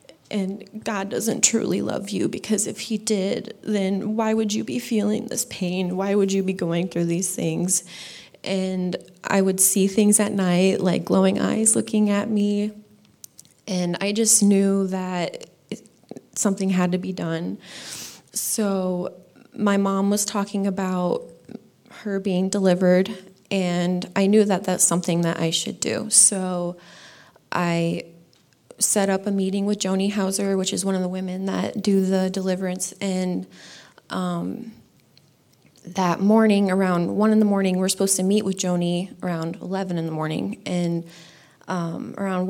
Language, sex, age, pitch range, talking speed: English, female, 20-39, 175-200 Hz, 155 wpm